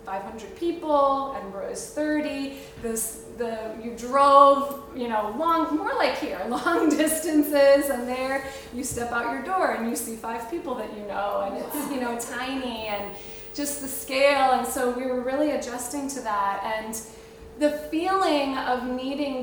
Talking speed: 165 wpm